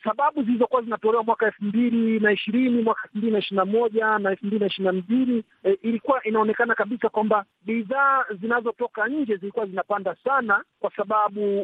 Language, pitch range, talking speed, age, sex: Swahili, 195-255 Hz, 135 wpm, 50-69, male